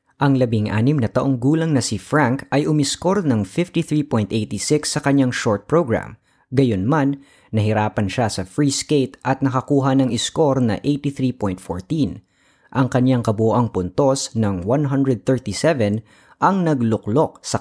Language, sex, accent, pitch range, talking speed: Filipino, female, native, 110-140 Hz, 130 wpm